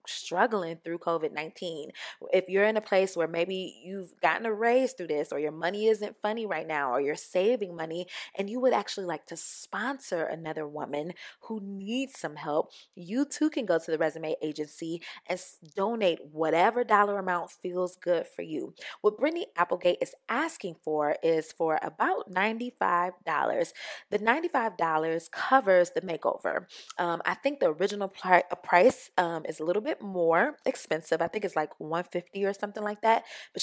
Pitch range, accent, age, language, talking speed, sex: 165-210 Hz, American, 20-39, English, 170 wpm, female